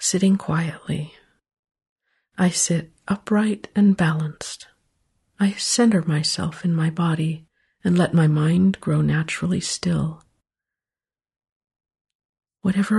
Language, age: English, 50-69